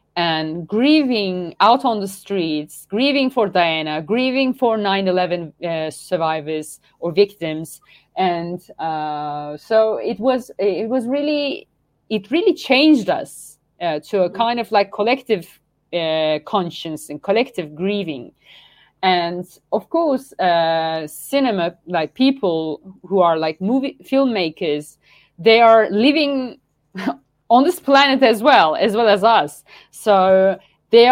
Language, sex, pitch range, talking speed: English, female, 165-230 Hz, 130 wpm